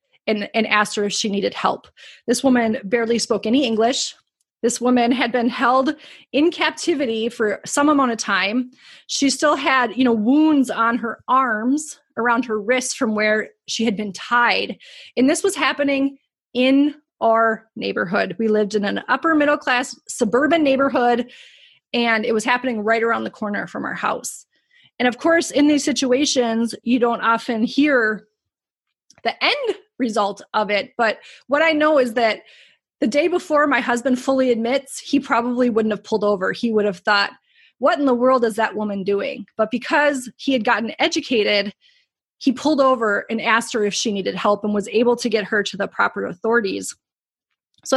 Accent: American